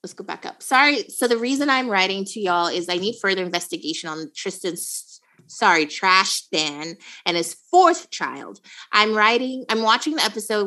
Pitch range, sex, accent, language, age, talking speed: 165-220 Hz, female, American, English, 30-49, 180 wpm